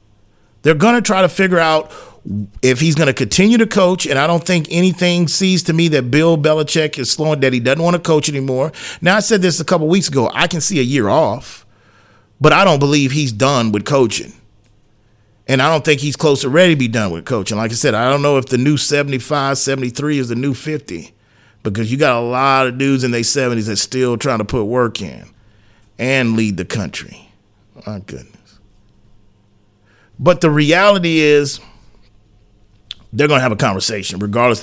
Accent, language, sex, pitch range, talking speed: American, English, male, 105-145 Hz, 205 wpm